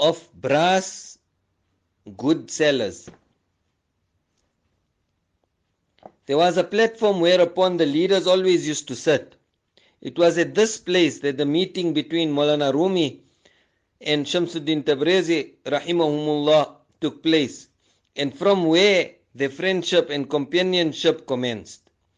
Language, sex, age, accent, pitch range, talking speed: English, male, 50-69, Indian, 130-180 Hz, 110 wpm